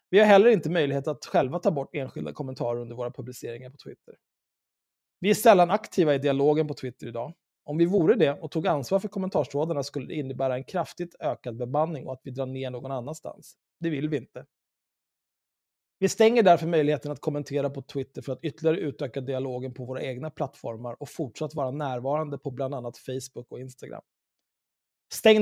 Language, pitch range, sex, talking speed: Swedish, 135-175 Hz, male, 190 wpm